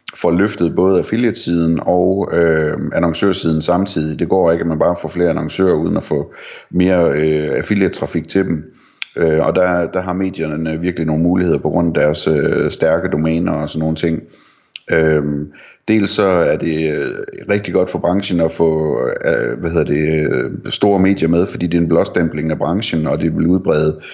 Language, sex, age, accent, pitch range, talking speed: Danish, male, 30-49, native, 80-95 Hz, 180 wpm